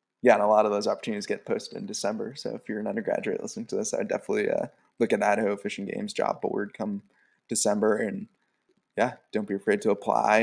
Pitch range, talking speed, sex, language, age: 105-115 Hz, 225 wpm, male, English, 20-39